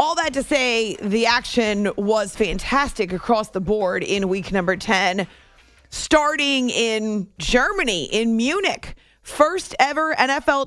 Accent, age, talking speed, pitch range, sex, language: American, 30-49, 130 wpm, 215-275 Hz, female, English